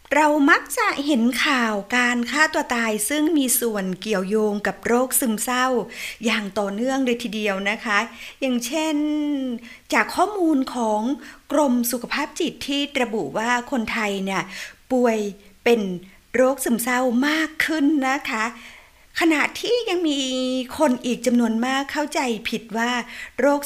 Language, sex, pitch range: Thai, female, 225-280 Hz